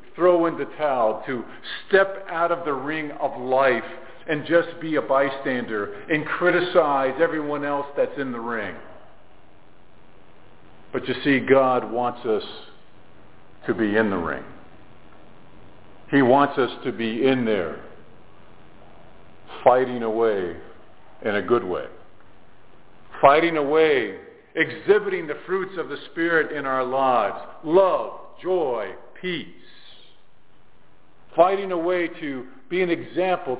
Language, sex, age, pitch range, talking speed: English, male, 50-69, 130-180 Hz, 125 wpm